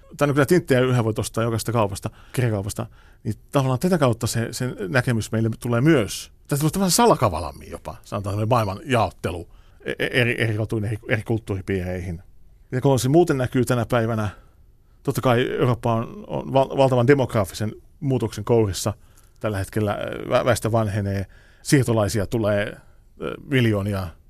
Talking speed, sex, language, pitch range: 140 wpm, male, Finnish, 105-130 Hz